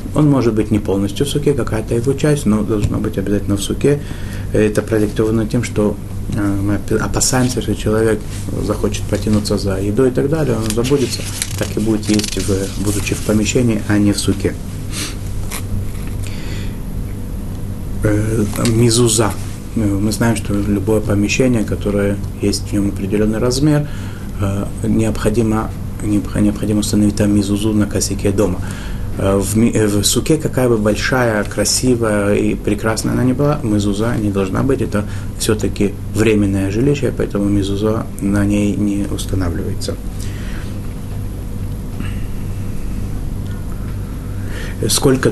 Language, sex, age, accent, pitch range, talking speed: Russian, male, 30-49, native, 100-110 Hz, 120 wpm